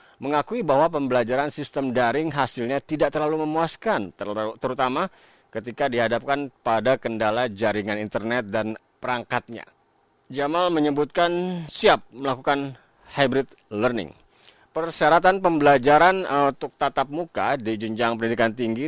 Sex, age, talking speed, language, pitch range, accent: male, 40-59, 110 wpm, Indonesian, 120-150 Hz, native